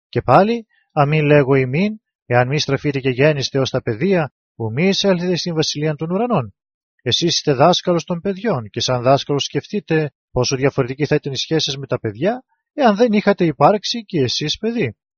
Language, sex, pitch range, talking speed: English, male, 130-175 Hz, 180 wpm